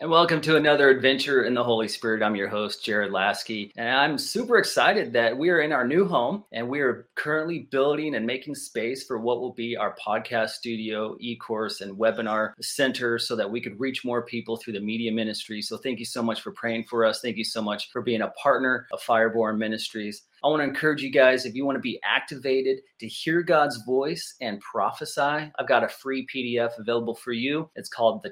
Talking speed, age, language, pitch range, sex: 220 wpm, 30-49, English, 110-130 Hz, male